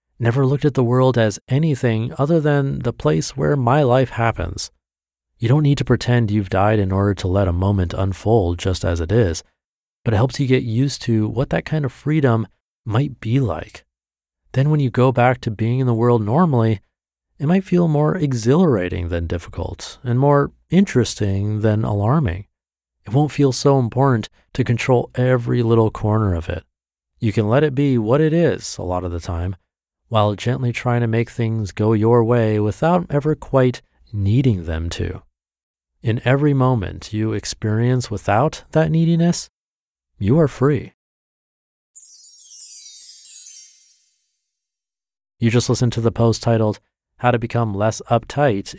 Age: 30-49